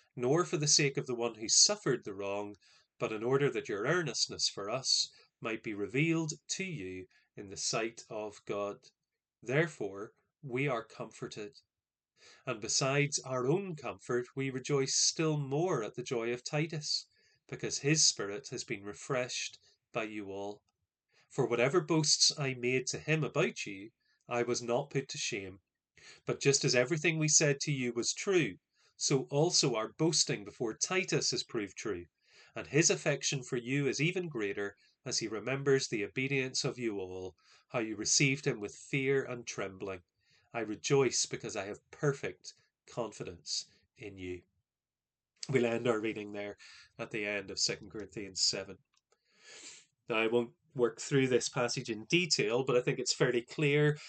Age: 30-49